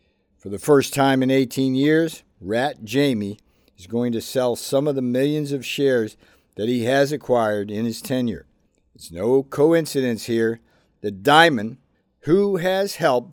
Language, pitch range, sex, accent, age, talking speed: English, 110-140 Hz, male, American, 50-69, 160 wpm